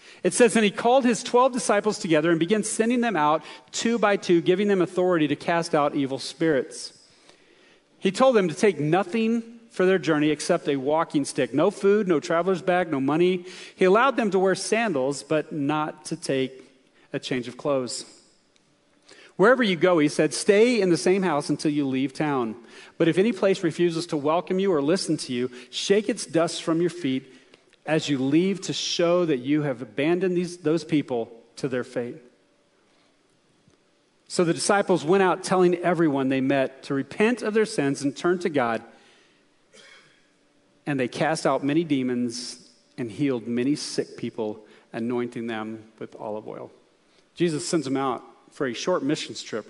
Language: English